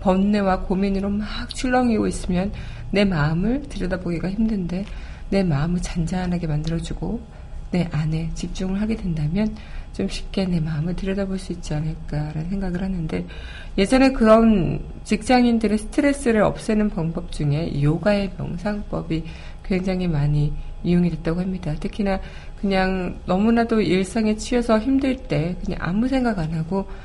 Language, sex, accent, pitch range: Korean, female, native, 165-210 Hz